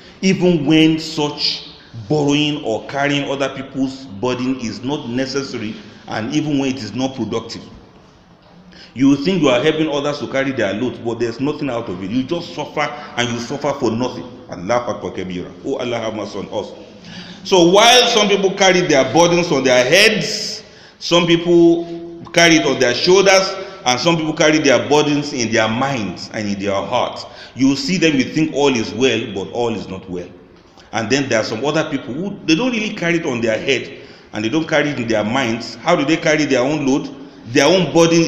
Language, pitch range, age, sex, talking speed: English, 125-175 Hz, 40-59, male, 200 wpm